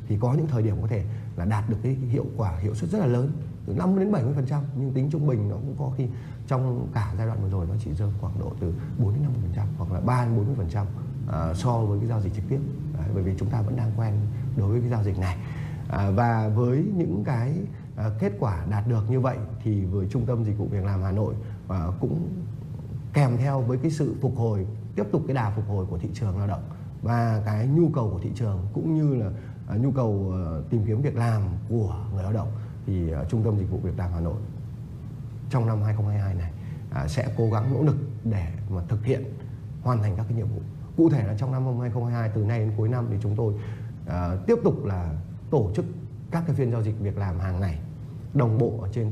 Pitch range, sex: 105-130 Hz, male